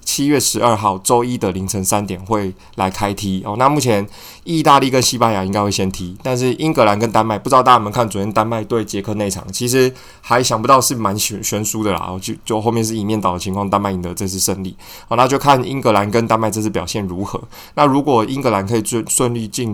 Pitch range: 95-120 Hz